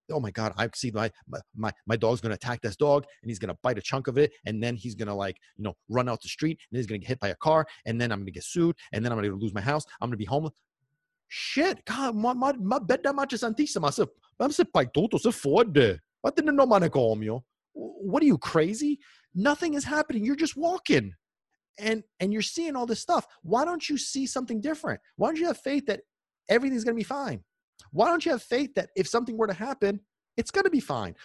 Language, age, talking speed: English, 30-49, 210 wpm